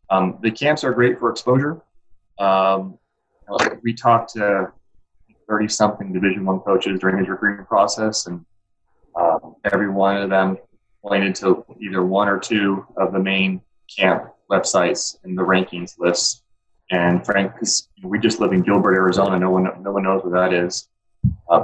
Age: 20-39